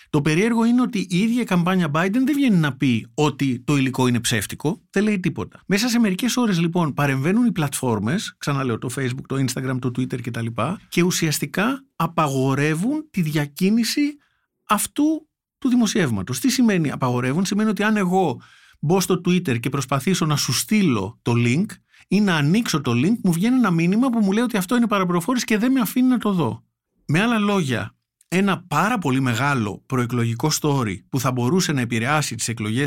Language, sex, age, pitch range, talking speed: Greek, male, 50-69, 130-215 Hz, 185 wpm